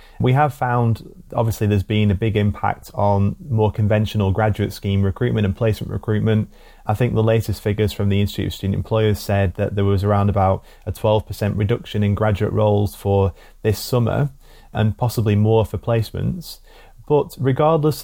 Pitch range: 100-115 Hz